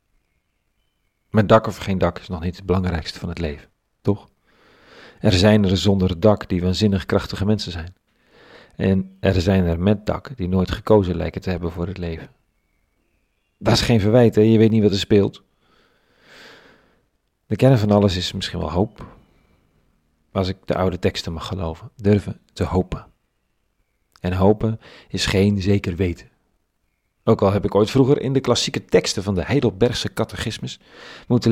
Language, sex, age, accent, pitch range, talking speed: Dutch, male, 40-59, Dutch, 90-115 Hz, 170 wpm